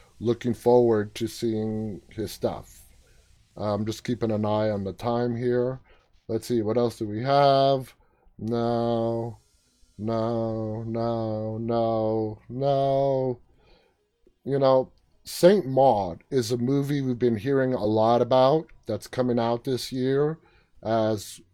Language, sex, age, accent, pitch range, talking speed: English, male, 30-49, American, 110-135 Hz, 130 wpm